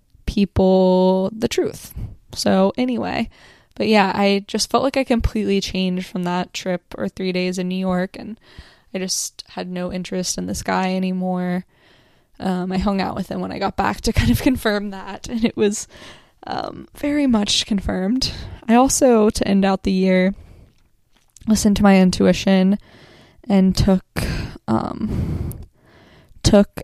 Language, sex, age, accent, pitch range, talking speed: English, female, 10-29, American, 185-230 Hz, 155 wpm